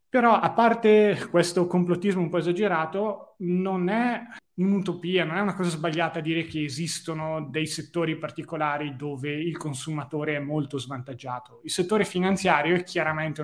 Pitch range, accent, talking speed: 150-170 Hz, native, 145 wpm